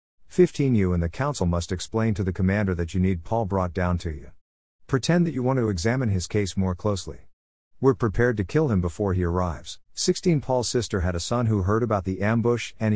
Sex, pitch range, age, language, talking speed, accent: male, 90-120 Hz, 50-69, English, 220 wpm, American